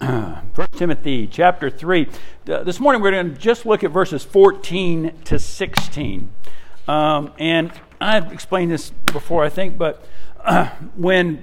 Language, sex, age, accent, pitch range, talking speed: English, male, 60-79, American, 140-180 Hz, 140 wpm